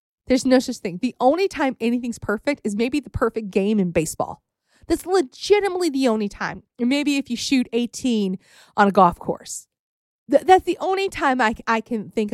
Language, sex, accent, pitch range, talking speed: English, female, American, 210-285 Hz, 180 wpm